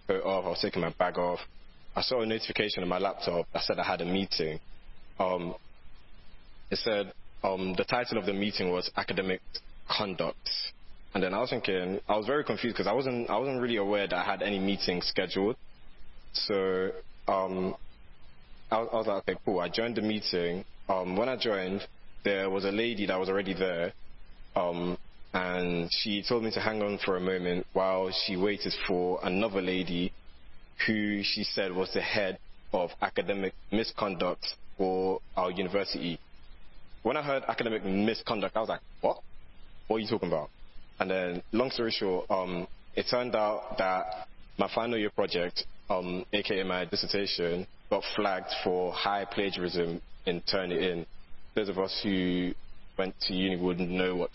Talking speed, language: 170 wpm, English